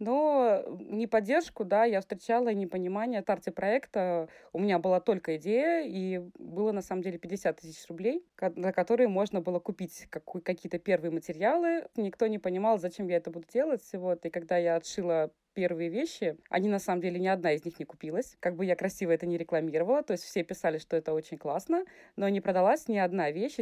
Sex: female